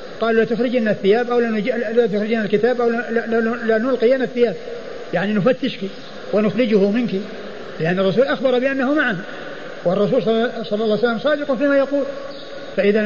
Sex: male